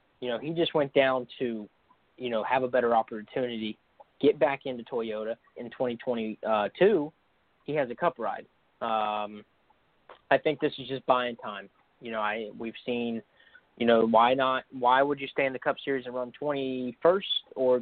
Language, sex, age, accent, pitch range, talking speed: English, male, 20-39, American, 110-130 Hz, 180 wpm